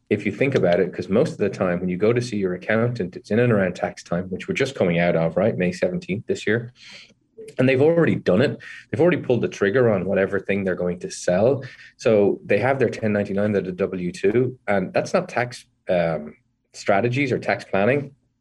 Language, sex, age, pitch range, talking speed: English, male, 30-49, 90-120 Hz, 225 wpm